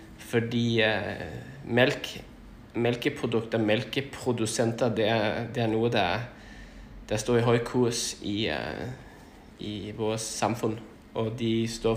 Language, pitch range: Danish, 105-120 Hz